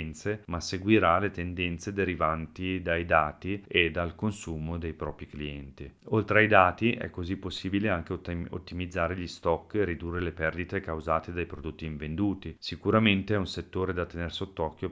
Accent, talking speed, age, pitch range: native, 155 wpm, 40-59, 80-100 Hz